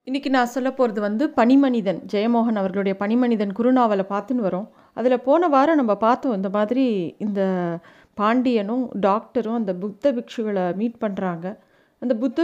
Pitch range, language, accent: 205-265 Hz, Tamil, native